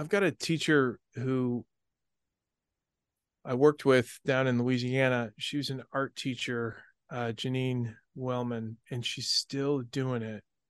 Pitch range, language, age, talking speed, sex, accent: 115-140 Hz, English, 30-49, 135 wpm, male, American